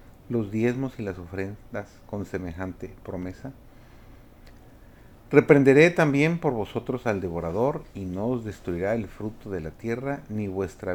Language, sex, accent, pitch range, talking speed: Spanish, male, Mexican, 95-125 Hz, 135 wpm